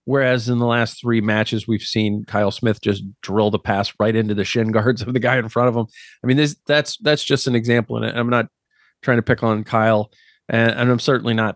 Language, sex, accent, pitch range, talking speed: English, male, American, 105-125 Hz, 245 wpm